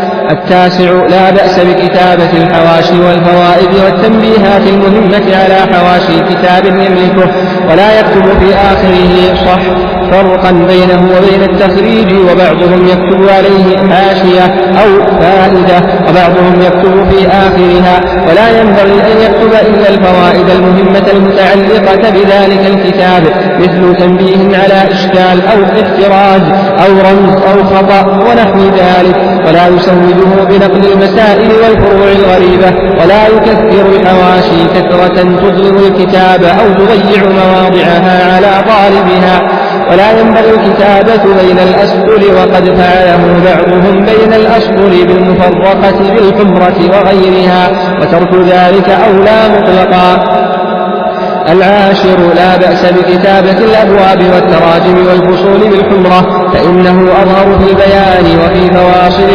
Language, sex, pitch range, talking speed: Arabic, male, 180-195 Hz, 100 wpm